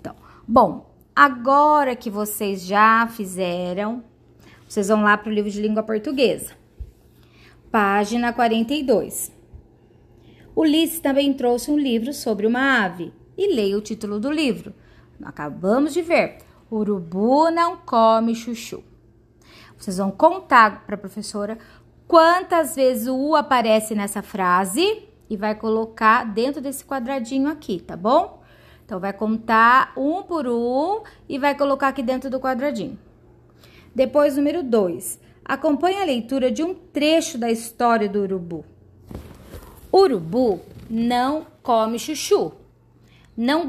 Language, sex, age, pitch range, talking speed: Portuguese, female, 20-39, 210-290 Hz, 125 wpm